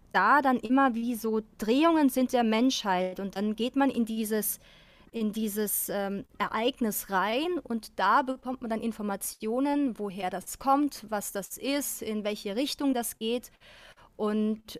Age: 30-49